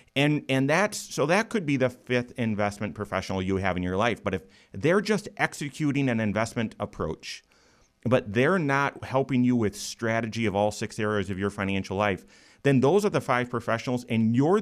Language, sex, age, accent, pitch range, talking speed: English, male, 30-49, American, 100-125 Hz, 195 wpm